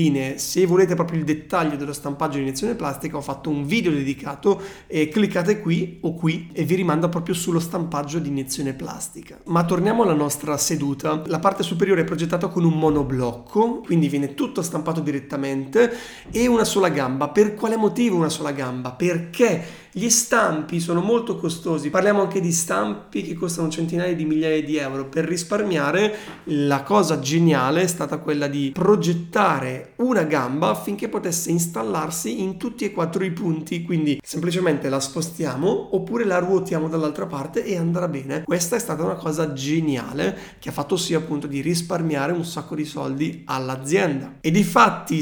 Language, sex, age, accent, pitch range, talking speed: Italian, male, 30-49, native, 150-185 Hz, 170 wpm